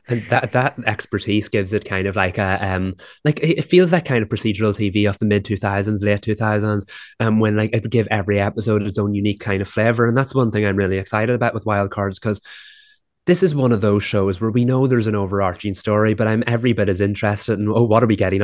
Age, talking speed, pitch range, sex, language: 20-39, 250 wpm, 100-115 Hz, male, English